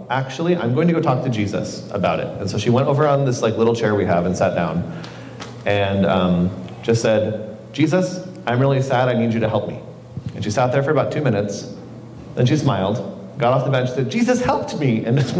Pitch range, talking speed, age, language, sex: 105-135 Hz, 240 wpm, 30-49, English, male